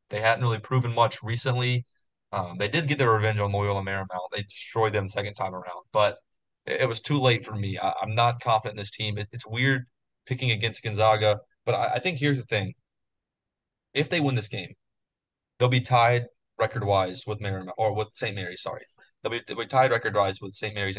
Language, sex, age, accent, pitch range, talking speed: English, male, 20-39, American, 105-130 Hz, 205 wpm